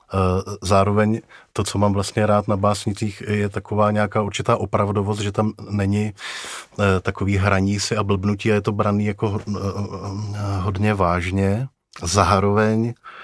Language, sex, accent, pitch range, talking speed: Czech, male, native, 95-105 Hz, 130 wpm